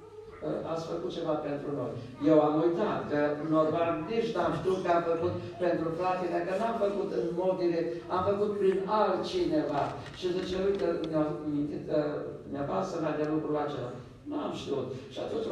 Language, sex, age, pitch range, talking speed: Romanian, male, 60-79, 150-175 Hz, 155 wpm